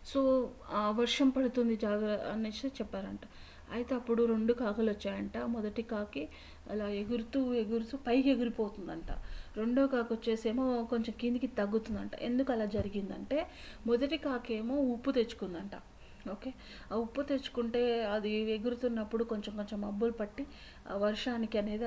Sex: female